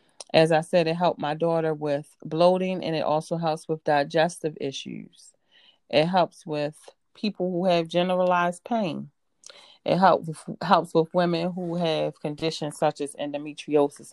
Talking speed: 150 wpm